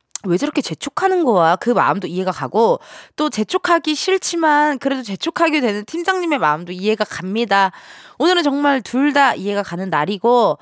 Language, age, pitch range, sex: Korean, 20-39, 200-310 Hz, female